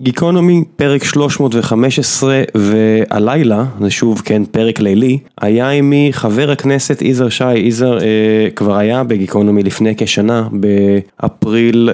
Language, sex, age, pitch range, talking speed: Hebrew, male, 20-39, 105-130 Hz, 115 wpm